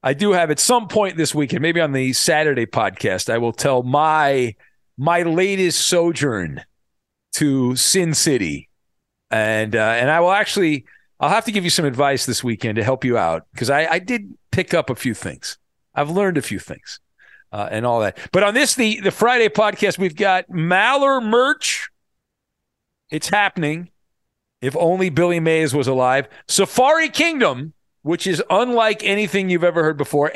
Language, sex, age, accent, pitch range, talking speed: English, male, 50-69, American, 145-210 Hz, 180 wpm